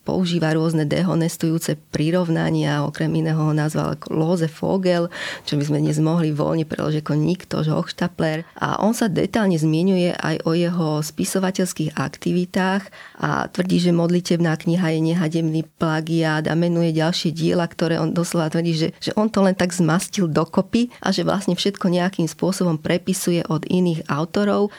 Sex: female